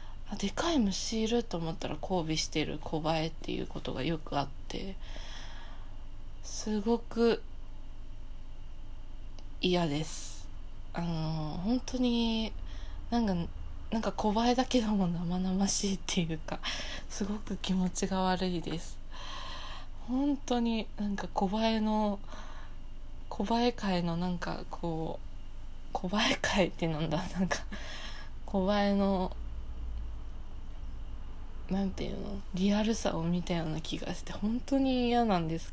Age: 20-39